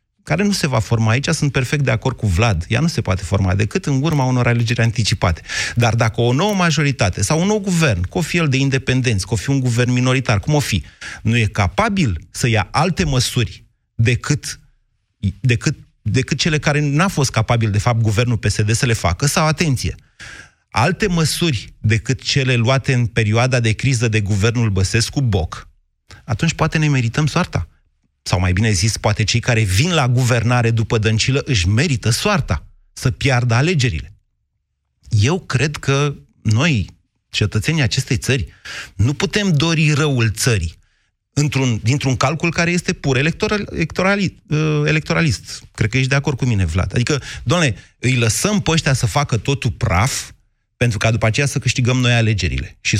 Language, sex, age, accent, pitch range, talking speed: Romanian, male, 30-49, native, 110-145 Hz, 170 wpm